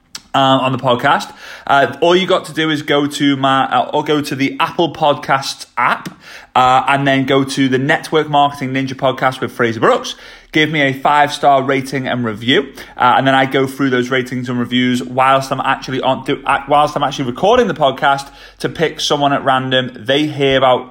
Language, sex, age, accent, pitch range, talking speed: English, male, 30-49, British, 130-155 Hz, 205 wpm